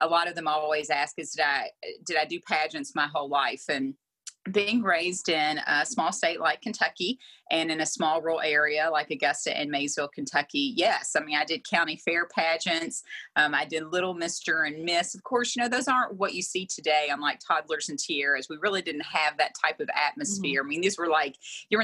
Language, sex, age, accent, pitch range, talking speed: English, female, 30-49, American, 155-225 Hz, 220 wpm